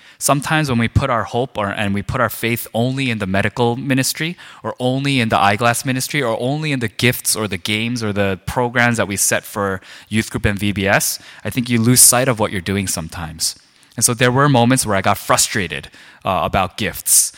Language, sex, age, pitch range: Korean, male, 20-39, 100-125 Hz